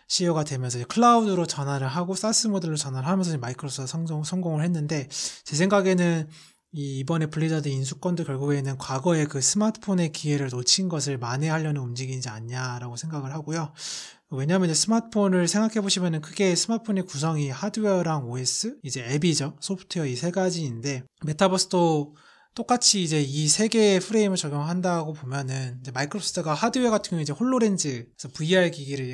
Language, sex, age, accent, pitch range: Korean, male, 20-39, native, 135-185 Hz